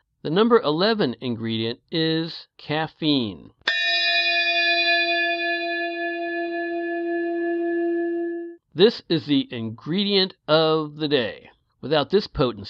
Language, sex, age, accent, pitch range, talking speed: English, male, 60-79, American, 115-170 Hz, 75 wpm